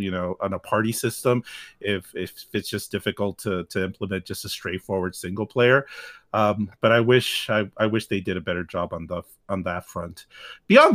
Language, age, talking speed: English, 40-59, 205 wpm